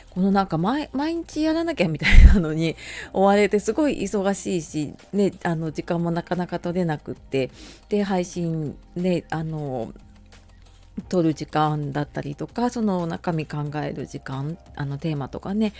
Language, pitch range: Japanese, 150-195 Hz